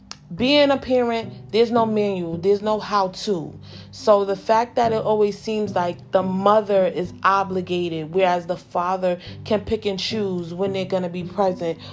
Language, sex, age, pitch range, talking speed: English, female, 30-49, 185-225 Hz, 170 wpm